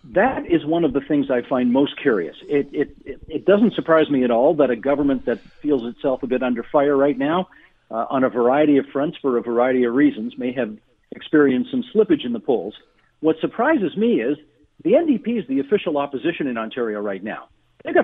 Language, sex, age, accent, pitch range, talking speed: English, male, 50-69, American, 140-220 Hz, 215 wpm